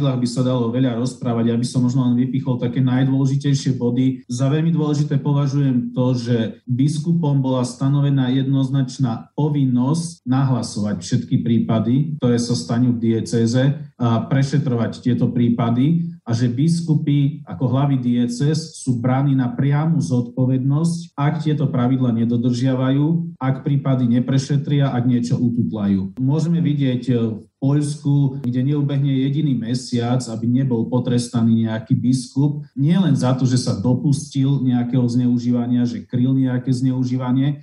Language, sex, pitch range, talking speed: Slovak, male, 120-140 Hz, 130 wpm